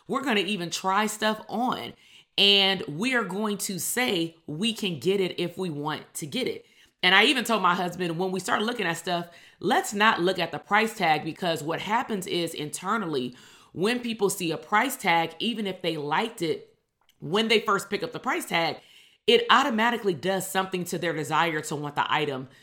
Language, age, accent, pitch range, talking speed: English, 30-49, American, 160-205 Hz, 205 wpm